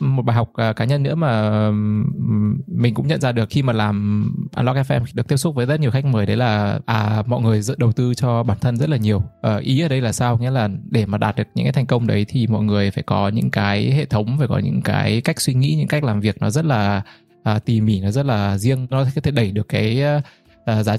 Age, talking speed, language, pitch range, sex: 20-39, 265 wpm, Vietnamese, 110-135 Hz, male